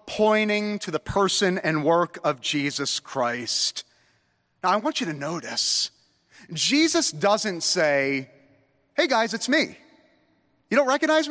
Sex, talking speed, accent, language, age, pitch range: male, 135 wpm, American, English, 30-49, 155-210 Hz